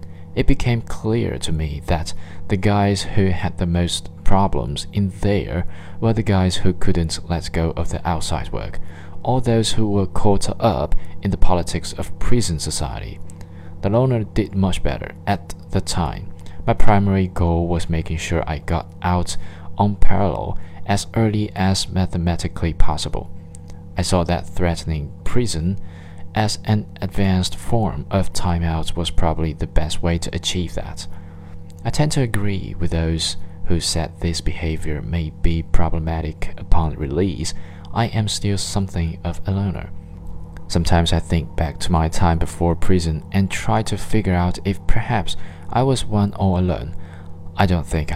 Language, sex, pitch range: Chinese, male, 85-95 Hz